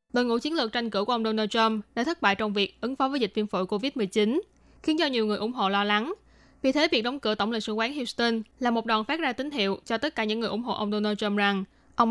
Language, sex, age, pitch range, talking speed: Vietnamese, female, 10-29, 210-255 Hz, 295 wpm